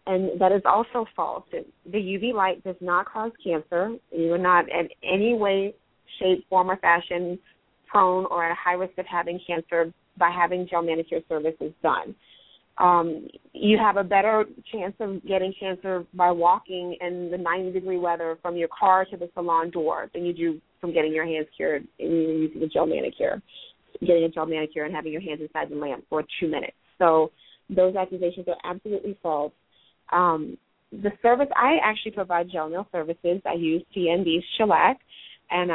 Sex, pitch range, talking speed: female, 165-195 Hz, 180 wpm